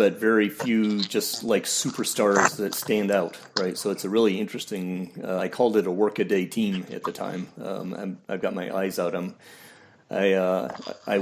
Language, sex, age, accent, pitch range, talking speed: English, male, 40-59, American, 100-125 Hz, 195 wpm